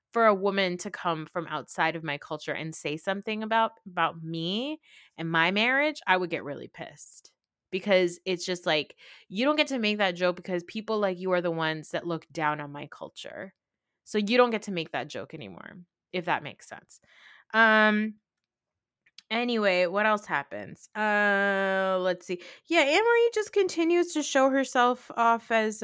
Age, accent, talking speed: 20-39, American, 180 wpm